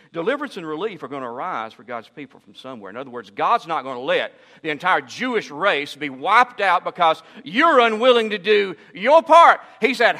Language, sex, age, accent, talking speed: English, male, 50-69, American, 210 wpm